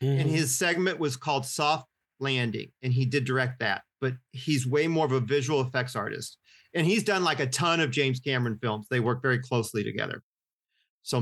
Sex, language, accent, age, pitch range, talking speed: male, English, American, 40-59, 125-150 Hz, 200 wpm